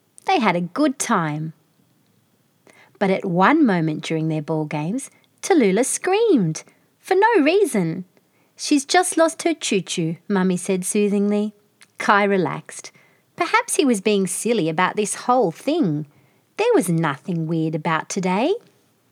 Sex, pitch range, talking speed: female, 165-265 Hz, 135 wpm